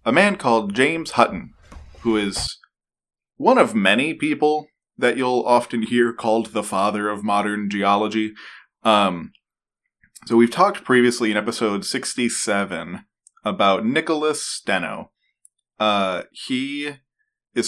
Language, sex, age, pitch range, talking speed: English, male, 20-39, 105-130 Hz, 120 wpm